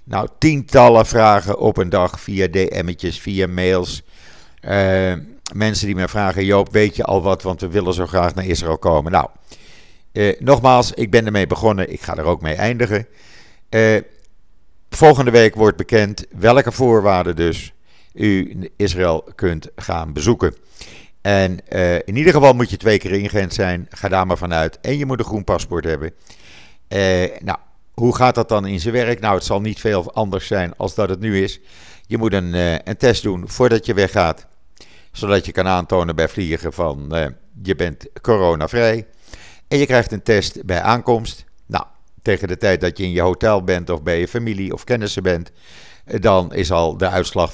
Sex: male